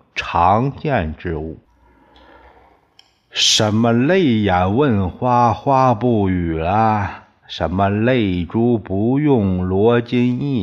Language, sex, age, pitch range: Chinese, male, 50-69, 90-125 Hz